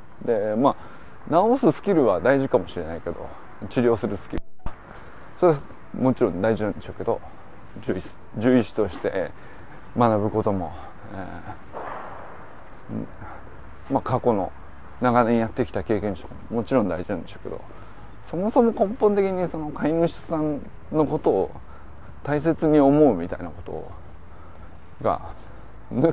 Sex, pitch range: male, 85-120 Hz